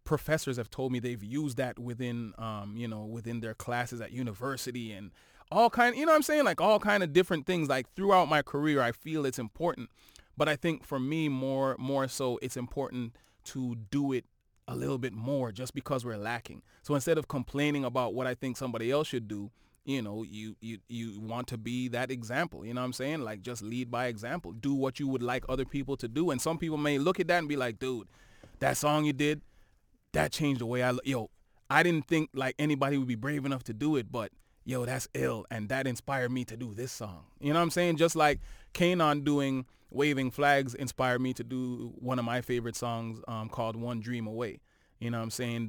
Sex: male